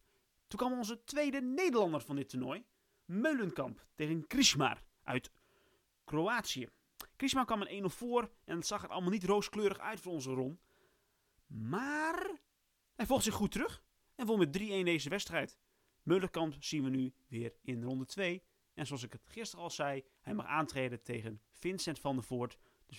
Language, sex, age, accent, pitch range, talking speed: Dutch, male, 30-49, Dutch, 130-210 Hz, 170 wpm